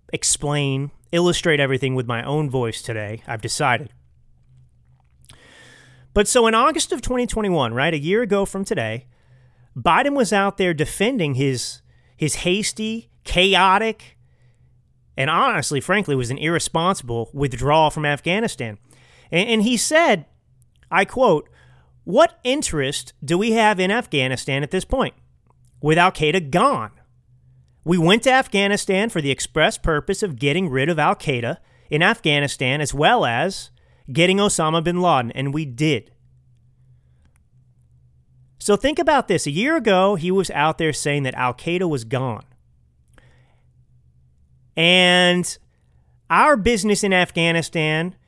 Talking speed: 130 wpm